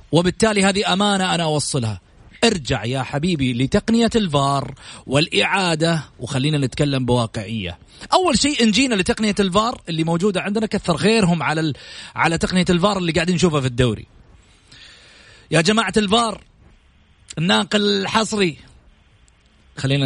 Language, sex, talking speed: Arabic, male, 120 wpm